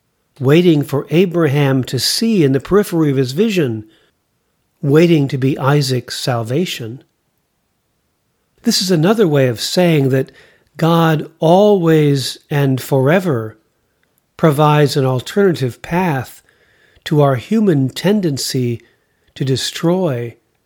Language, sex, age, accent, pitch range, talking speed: English, male, 40-59, American, 125-170 Hz, 105 wpm